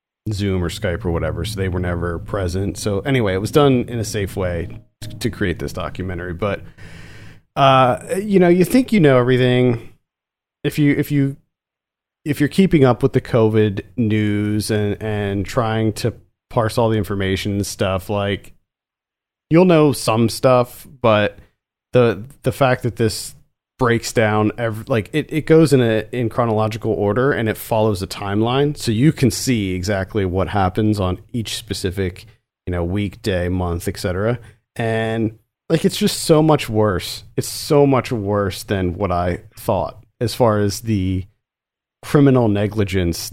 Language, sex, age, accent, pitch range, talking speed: English, male, 40-59, American, 100-120 Hz, 165 wpm